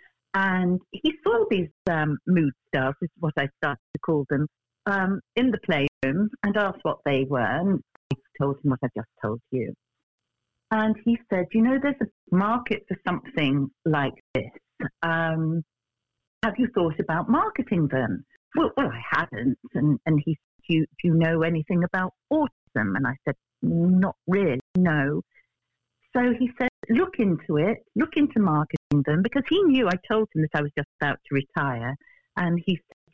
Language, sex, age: English, female, 50-69